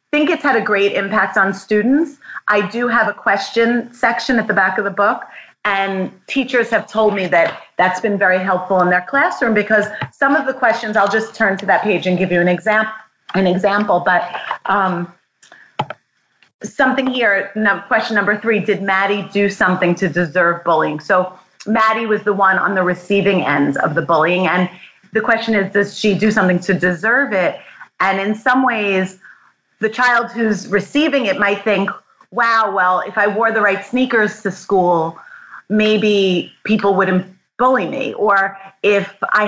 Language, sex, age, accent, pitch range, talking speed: English, female, 30-49, American, 190-220 Hz, 180 wpm